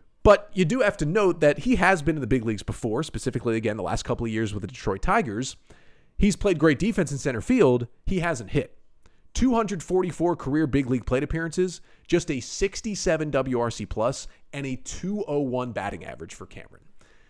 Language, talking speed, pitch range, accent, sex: English, 185 wpm, 120-180 Hz, American, male